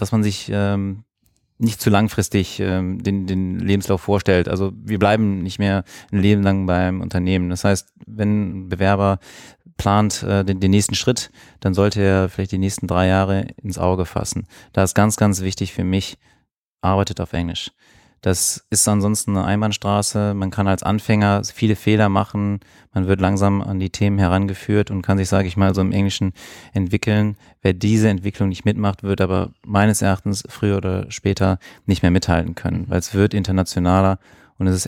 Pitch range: 95-105 Hz